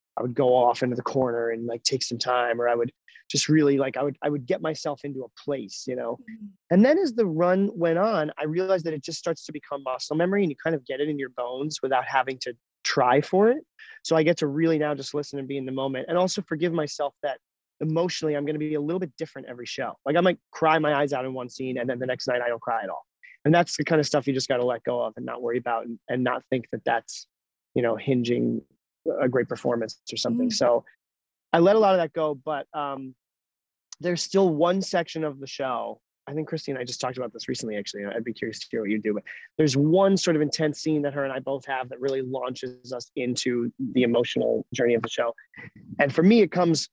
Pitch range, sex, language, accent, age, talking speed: 125-165 Hz, male, English, American, 30-49, 260 wpm